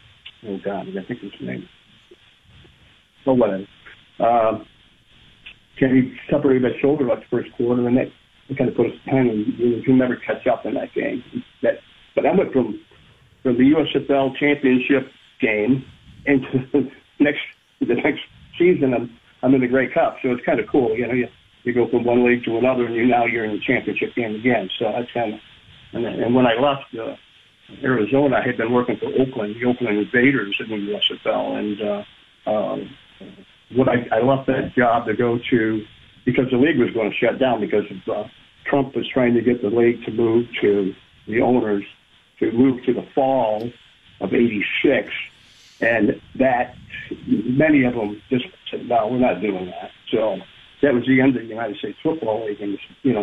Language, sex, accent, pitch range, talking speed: English, male, American, 110-130 Hz, 200 wpm